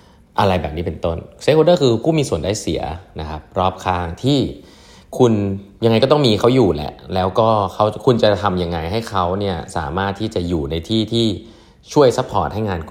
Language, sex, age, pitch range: Thai, male, 20-39, 80-105 Hz